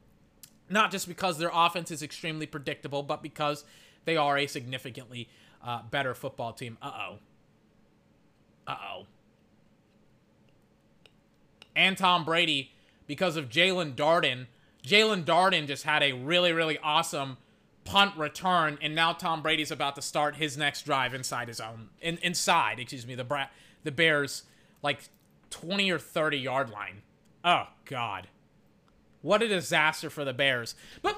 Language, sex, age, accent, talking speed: English, male, 30-49, American, 140 wpm